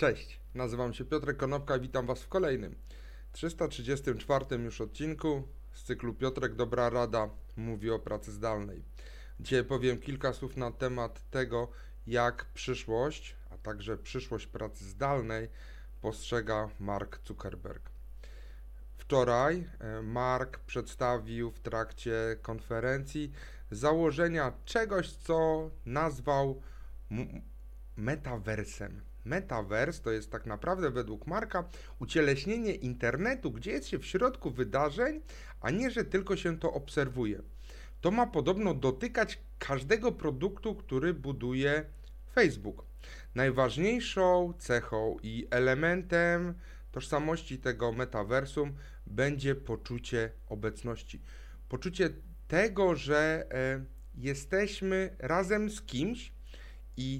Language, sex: Polish, male